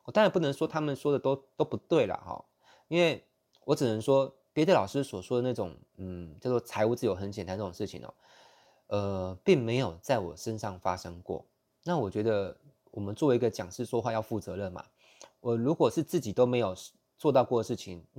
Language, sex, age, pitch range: Chinese, male, 20-39, 100-130 Hz